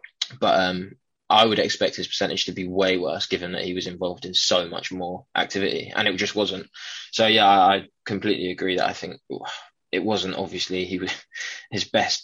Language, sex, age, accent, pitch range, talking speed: English, male, 20-39, British, 95-105 Hz, 200 wpm